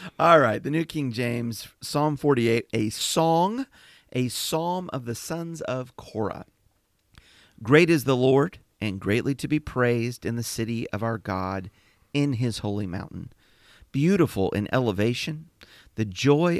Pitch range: 100-145 Hz